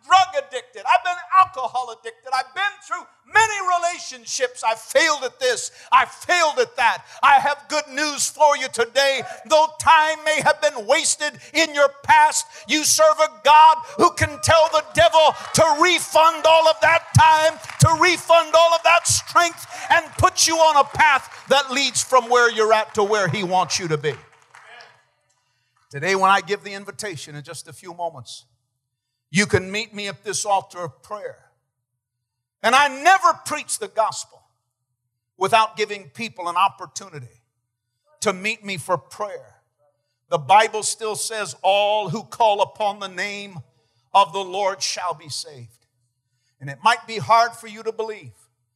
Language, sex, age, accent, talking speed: English, male, 50-69, American, 165 wpm